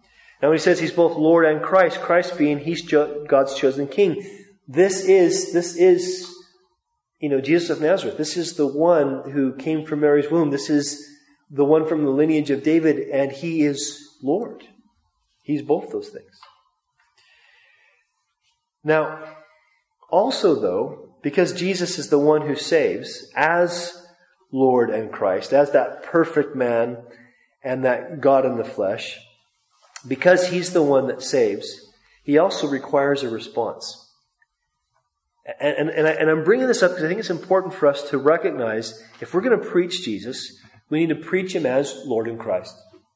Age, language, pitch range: 30-49, English, 140-180 Hz